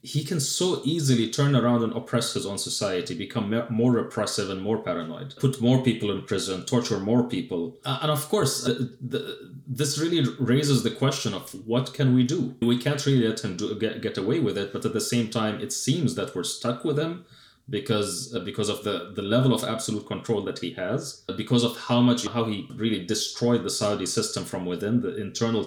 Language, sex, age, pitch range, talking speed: English, male, 30-49, 110-130 Hz, 195 wpm